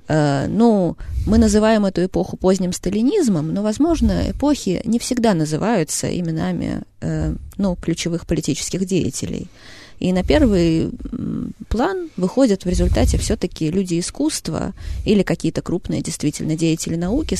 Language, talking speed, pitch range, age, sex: Russian, 115 wpm, 150-205 Hz, 20-39, female